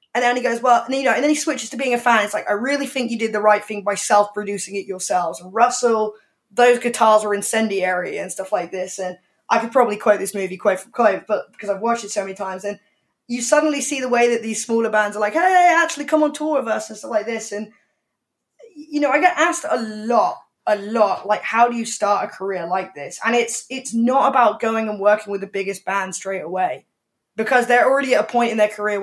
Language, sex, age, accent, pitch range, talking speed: English, female, 10-29, British, 205-250 Hz, 255 wpm